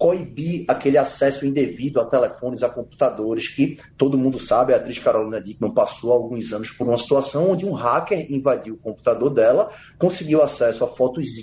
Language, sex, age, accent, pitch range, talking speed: Portuguese, male, 20-39, Brazilian, 125-155 Hz, 170 wpm